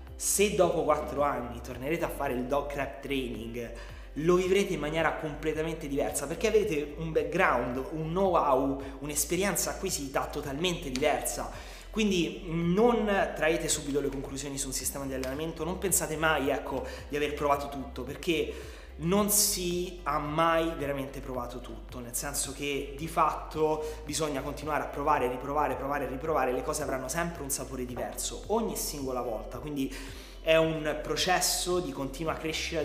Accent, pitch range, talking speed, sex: native, 135-160 Hz, 155 wpm, male